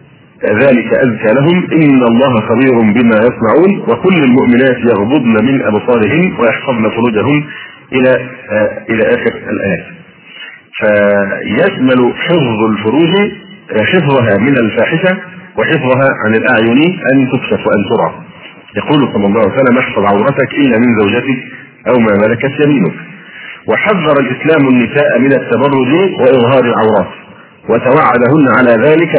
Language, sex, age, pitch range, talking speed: Arabic, male, 40-59, 115-150 Hz, 115 wpm